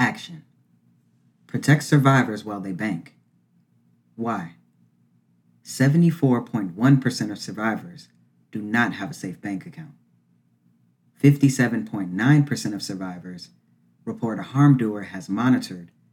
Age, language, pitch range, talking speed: 40-59, English, 85-125 Hz, 95 wpm